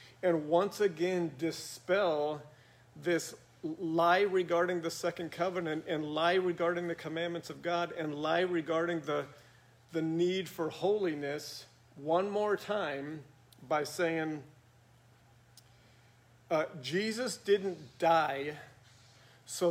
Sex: male